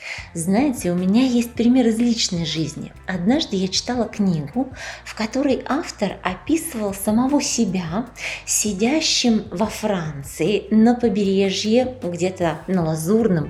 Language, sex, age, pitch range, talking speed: Russian, female, 20-39, 190-245 Hz, 115 wpm